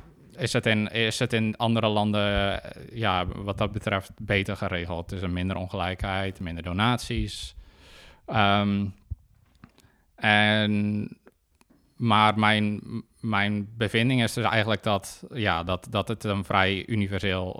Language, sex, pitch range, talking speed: Dutch, male, 95-110 Hz, 130 wpm